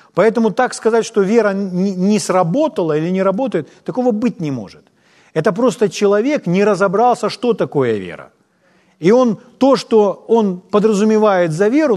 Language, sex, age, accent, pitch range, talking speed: Ukrainian, male, 40-59, native, 140-200 Hz, 150 wpm